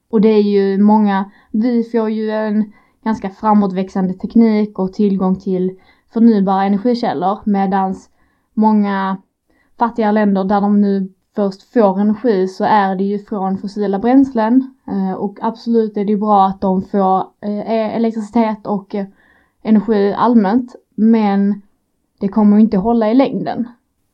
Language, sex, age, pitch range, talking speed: Swedish, female, 20-39, 195-225 Hz, 135 wpm